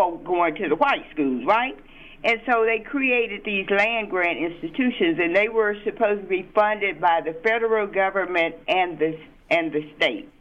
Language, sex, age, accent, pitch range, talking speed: English, female, 50-69, American, 165-230 Hz, 165 wpm